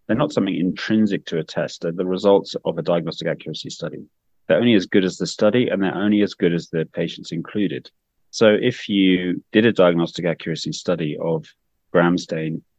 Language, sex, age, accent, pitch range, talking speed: English, male, 30-49, British, 85-95 Hz, 195 wpm